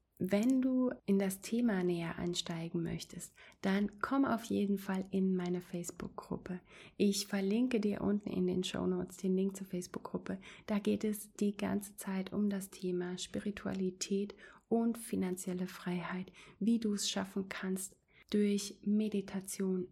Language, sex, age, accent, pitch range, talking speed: German, female, 30-49, German, 185-210 Hz, 145 wpm